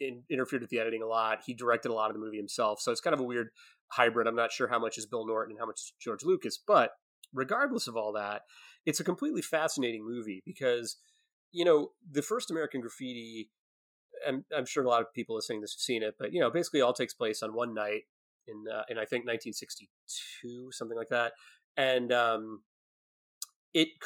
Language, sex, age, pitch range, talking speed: English, male, 30-49, 115-160 Hz, 220 wpm